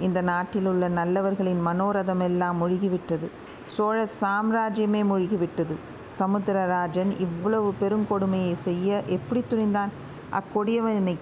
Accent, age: native, 50-69